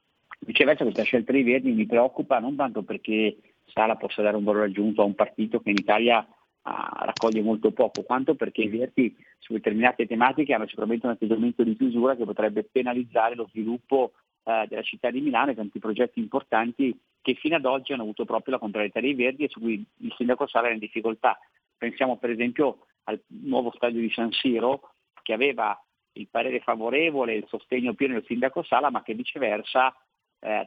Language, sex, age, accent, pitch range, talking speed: Italian, male, 40-59, native, 115-135 Hz, 190 wpm